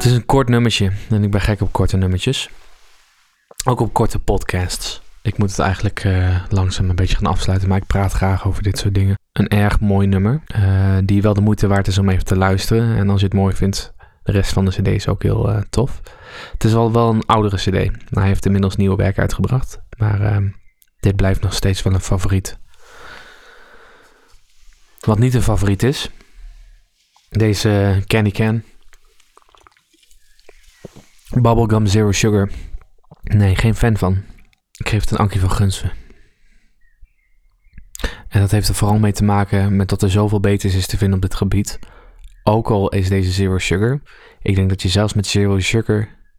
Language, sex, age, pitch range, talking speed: Dutch, male, 20-39, 95-110 Hz, 185 wpm